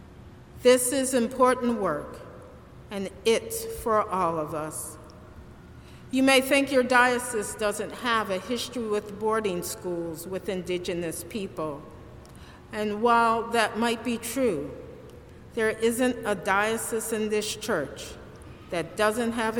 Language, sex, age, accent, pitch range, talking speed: English, female, 50-69, American, 195-245 Hz, 125 wpm